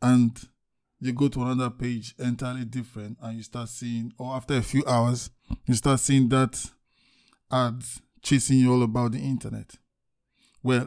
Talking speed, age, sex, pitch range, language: 160 wpm, 20-39, male, 120-140 Hz, English